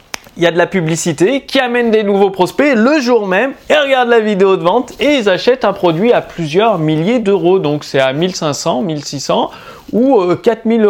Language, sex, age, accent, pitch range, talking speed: French, male, 30-49, French, 165-240 Hz, 200 wpm